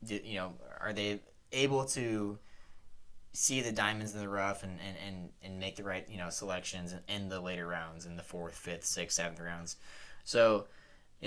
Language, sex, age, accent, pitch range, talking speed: English, male, 20-39, American, 95-115 Hz, 190 wpm